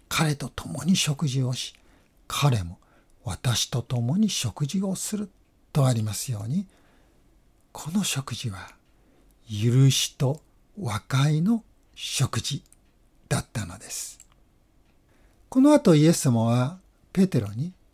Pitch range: 125-180 Hz